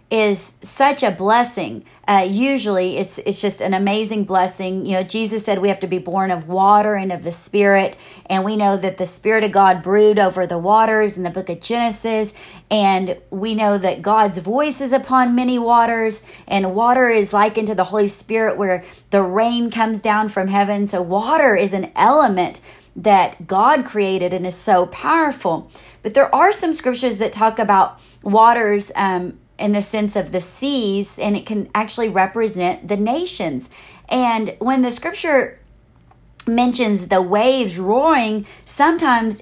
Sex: female